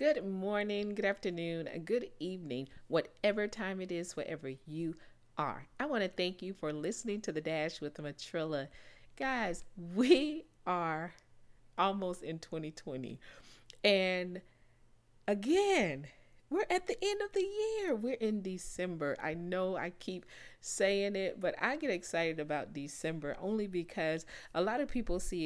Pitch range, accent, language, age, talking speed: 155-220 Hz, American, English, 40-59, 145 wpm